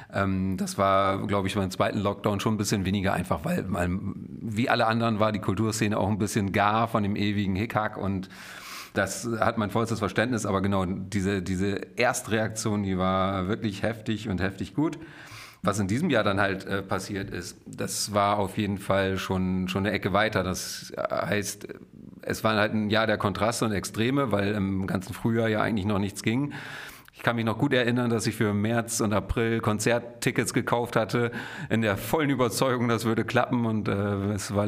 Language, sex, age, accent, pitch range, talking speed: German, male, 40-59, German, 100-115 Hz, 190 wpm